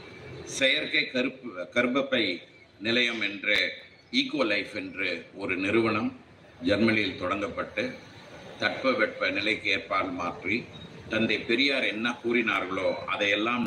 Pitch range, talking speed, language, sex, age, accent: 100-130 Hz, 95 wpm, Tamil, male, 50-69, native